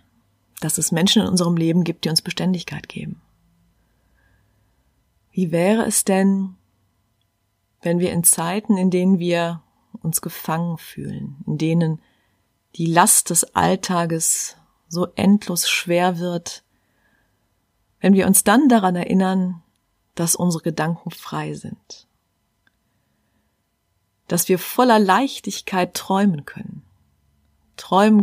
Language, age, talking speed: German, 30-49, 115 wpm